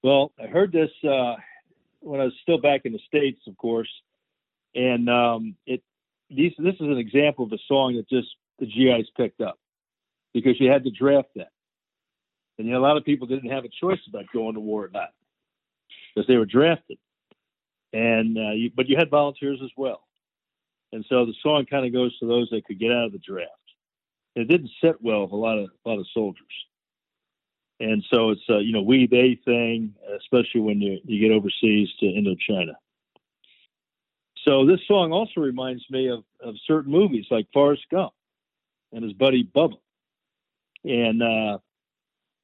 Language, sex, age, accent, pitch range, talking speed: English, male, 60-79, American, 115-140 Hz, 190 wpm